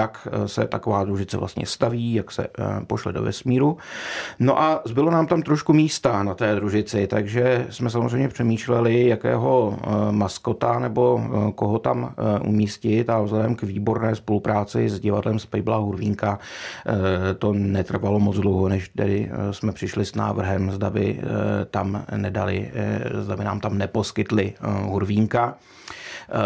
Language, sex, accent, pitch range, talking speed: Czech, male, native, 100-115 Hz, 140 wpm